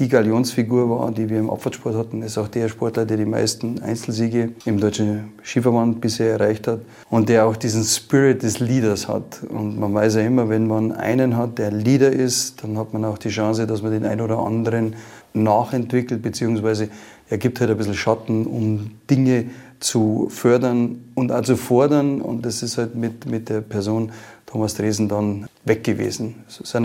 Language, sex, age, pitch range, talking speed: German, male, 30-49, 110-120 Hz, 190 wpm